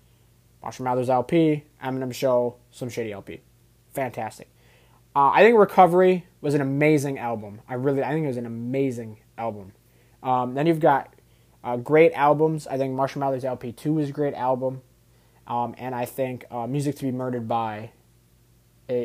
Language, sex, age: English, male, 20-39